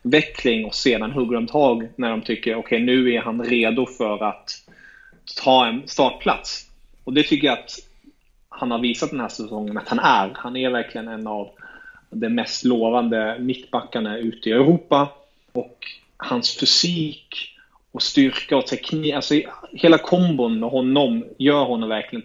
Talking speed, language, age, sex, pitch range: 160 wpm, Swedish, 30-49, male, 120-145 Hz